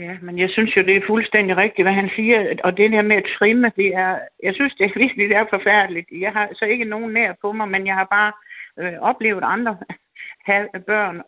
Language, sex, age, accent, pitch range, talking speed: Danish, female, 60-79, native, 185-230 Hz, 225 wpm